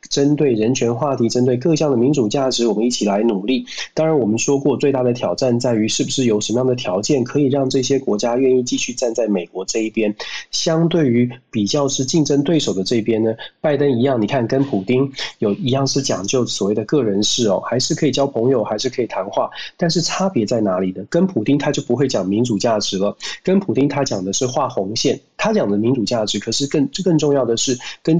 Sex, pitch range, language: male, 115-150 Hz, Chinese